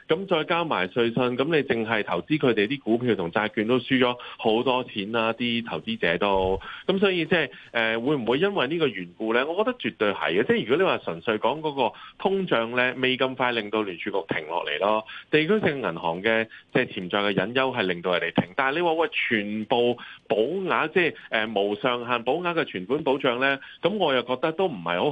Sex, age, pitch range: male, 30-49, 110-155 Hz